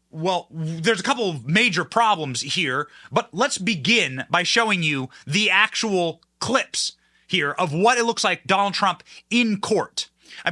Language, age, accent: English, 30-49, American